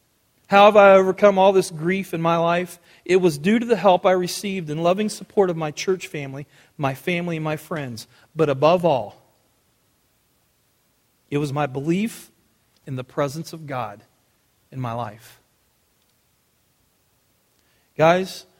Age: 40-59